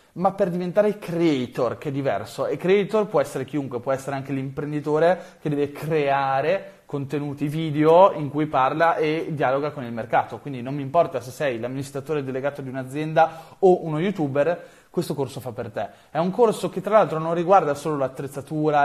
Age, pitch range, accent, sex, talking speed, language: 20-39, 140-185 Hz, native, male, 180 wpm, Italian